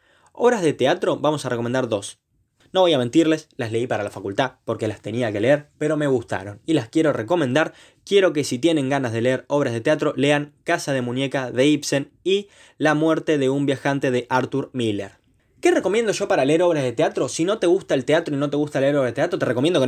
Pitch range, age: 125-155 Hz, 20-39